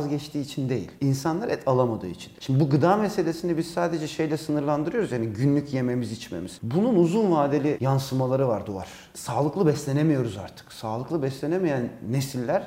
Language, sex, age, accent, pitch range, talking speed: Turkish, male, 40-59, native, 125-165 Hz, 145 wpm